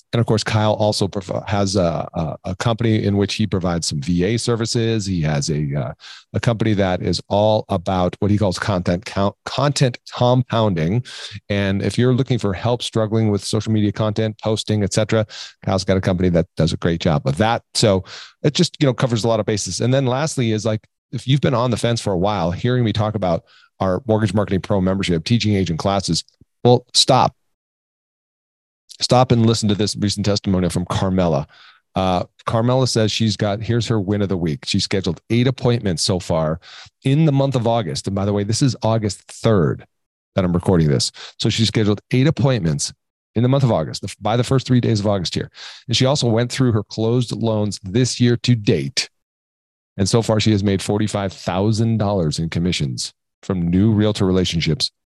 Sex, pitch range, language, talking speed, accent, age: male, 95-115 Hz, English, 200 wpm, American, 40-59